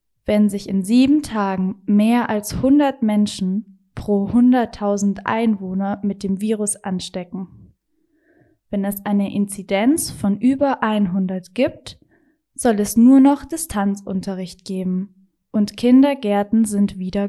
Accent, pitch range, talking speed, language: German, 200-250 Hz, 120 wpm, German